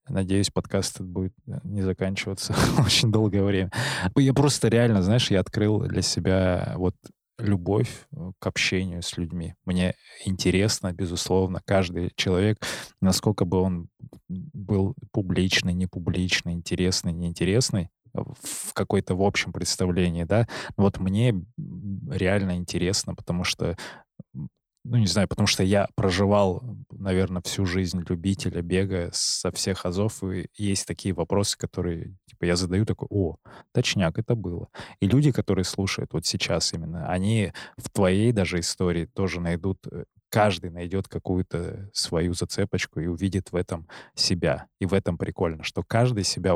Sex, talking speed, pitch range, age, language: male, 135 wpm, 90-105 Hz, 20-39, Russian